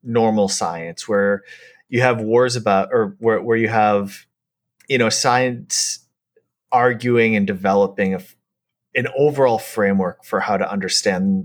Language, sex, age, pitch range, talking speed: English, male, 30-49, 95-125 Hz, 135 wpm